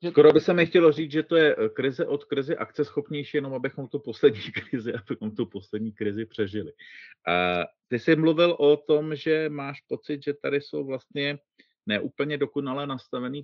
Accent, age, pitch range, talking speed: native, 40-59, 105-140 Hz, 170 wpm